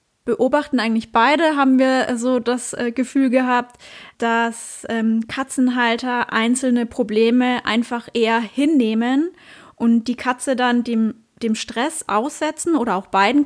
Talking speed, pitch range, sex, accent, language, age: 125 wpm, 230-265 Hz, female, German, German, 20-39